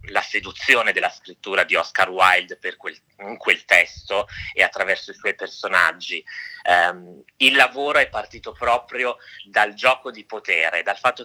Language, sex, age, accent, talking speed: Italian, male, 30-49, native, 155 wpm